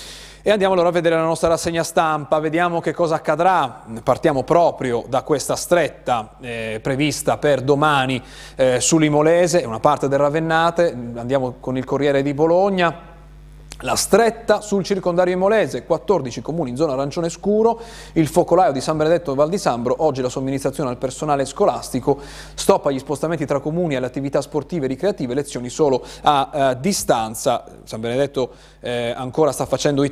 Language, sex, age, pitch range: Italian, male, 30-49, 125-165 Hz